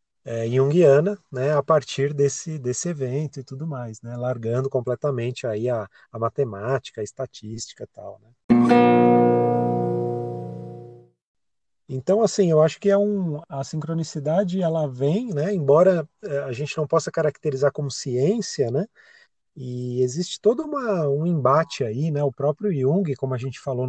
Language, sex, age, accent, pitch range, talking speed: Portuguese, male, 30-49, Brazilian, 125-175 Hz, 135 wpm